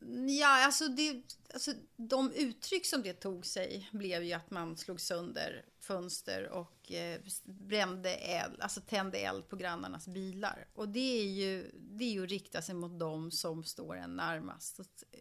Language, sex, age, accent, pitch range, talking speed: English, female, 30-49, Swedish, 185-240 Hz, 165 wpm